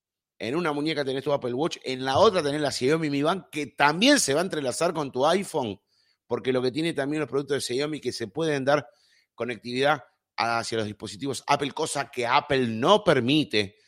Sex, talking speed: male, 205 wpm